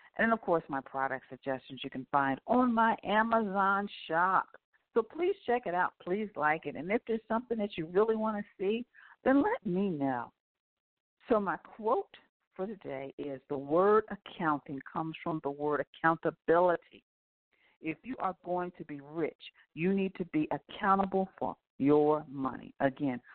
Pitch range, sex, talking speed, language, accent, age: 145-210 Hz, female, 170 wpm, English, American, 50-69